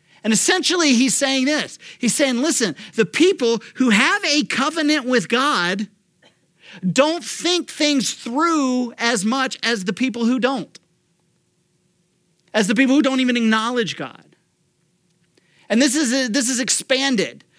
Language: English